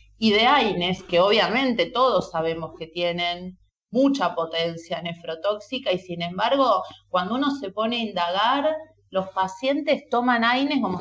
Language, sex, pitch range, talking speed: Spanish, female, 180-230 Hz, 140 wpm